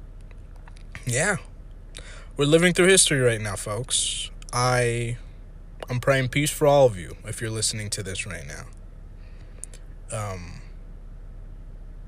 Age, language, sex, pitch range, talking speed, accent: 20-39, English, male, 90-125 Hz, 120 wpm, American